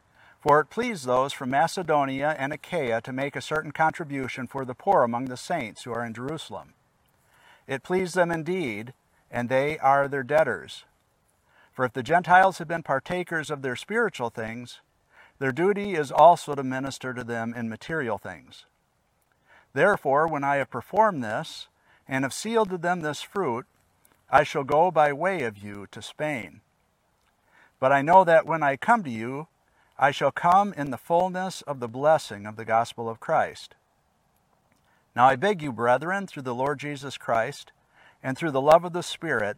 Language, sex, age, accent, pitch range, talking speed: English, male, 50-69, American, 120-165 Hz, 175 wpm